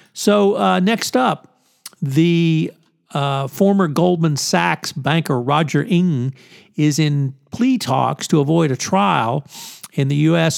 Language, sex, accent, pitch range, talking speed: English, male, American, 140-170 Hz, 130 wpm